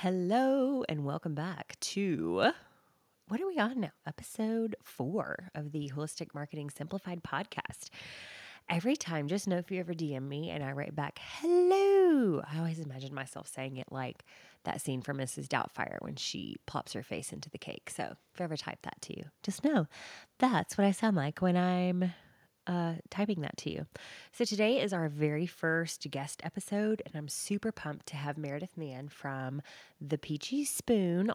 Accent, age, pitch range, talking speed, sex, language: American, 20-39, 145-195 Hz, 180 wpm, female, English